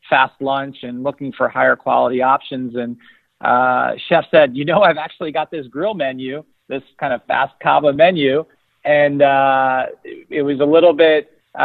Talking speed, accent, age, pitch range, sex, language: 170 wpm, American, 40-59, 125-150 Hz, male, English